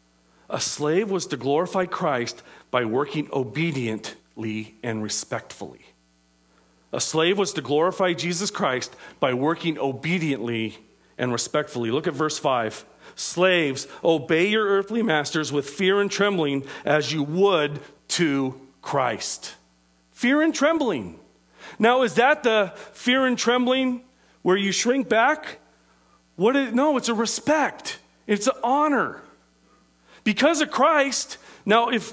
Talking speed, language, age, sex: 130 wpm, English, 40-59, male